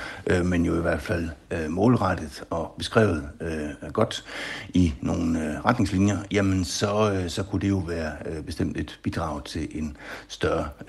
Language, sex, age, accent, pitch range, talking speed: Danish, male, 60-79, native, 80-100 Hz, 140 wpm